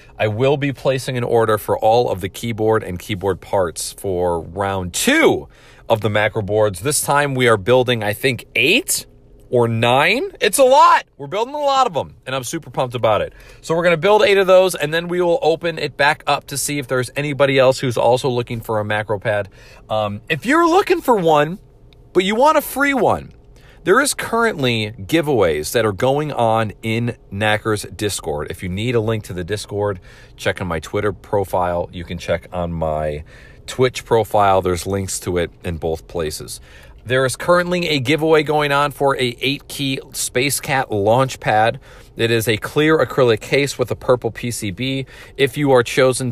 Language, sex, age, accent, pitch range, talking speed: English, male, 40-59, American, 110-150 Hz, 200 wpm